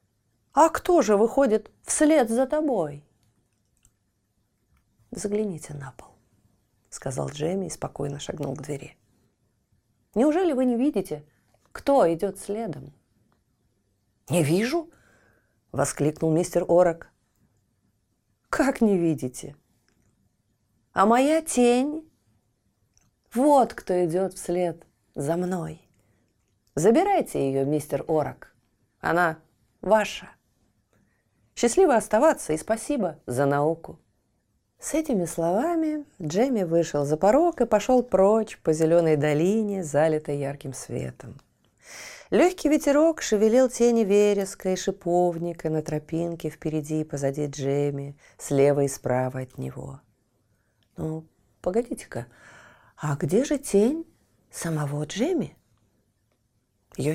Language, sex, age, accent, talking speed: Russian, female, 30-49, native, 100 wpm